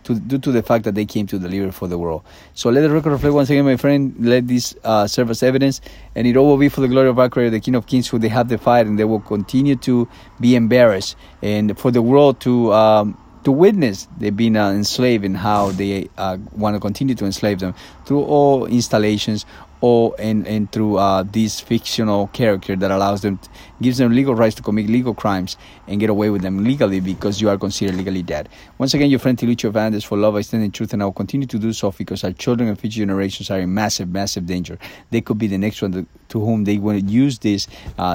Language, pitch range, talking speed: English, 100-120 Hz, 245 wpm